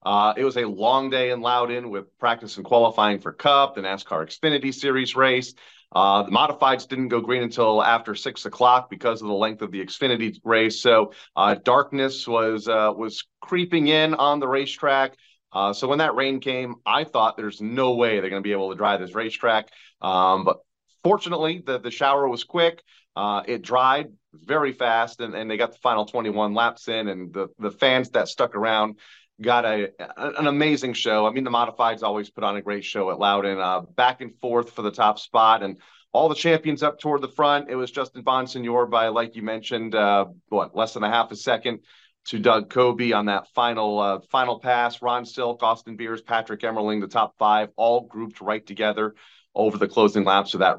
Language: English